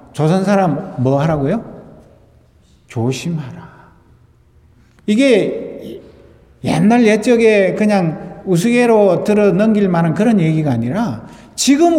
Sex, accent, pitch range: male, native, 175-225 Hz